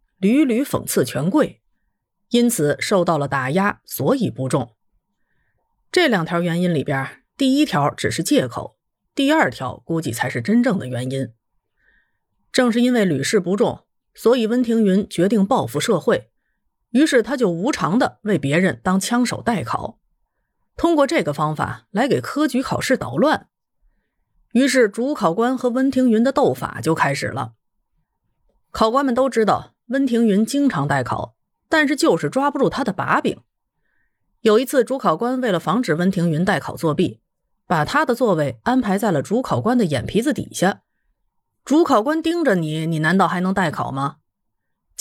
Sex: female